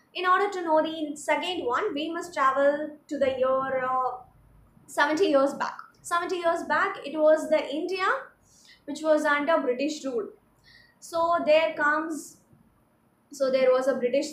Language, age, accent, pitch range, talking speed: Tamil, 20-39, native, 265-315 Hz, 150 wpm